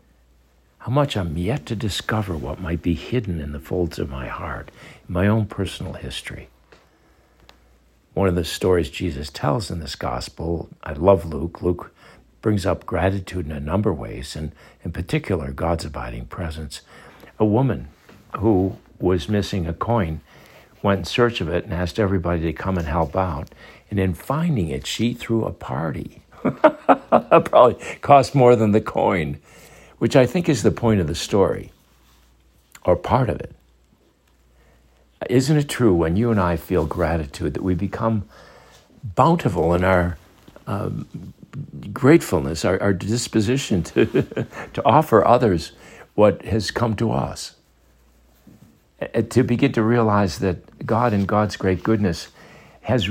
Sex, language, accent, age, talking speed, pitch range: male, English, American, 60-79, 150 wpm, 80-110 Hz